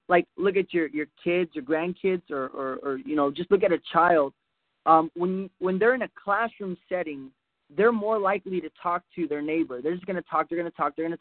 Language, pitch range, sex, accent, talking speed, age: English, 165-200 Hz, male, American, 245 wpm, 20-39